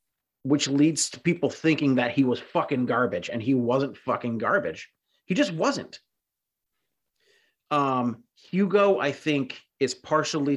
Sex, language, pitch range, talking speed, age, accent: male, English, 120-150 Hz, 135 wpm, 30-49, American